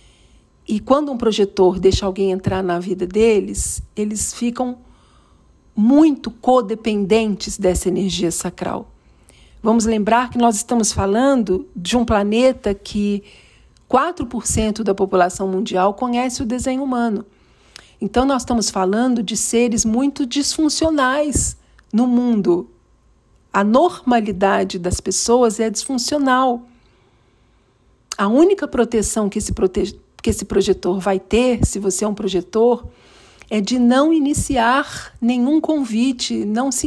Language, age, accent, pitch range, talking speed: Portuguese, 50-69, Brazilian, 200-245 Hz, 120 wpm